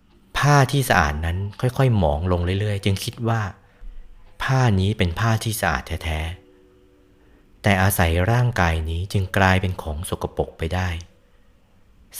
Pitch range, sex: 85-110 Hz, male